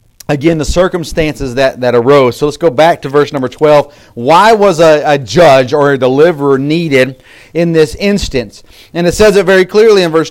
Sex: male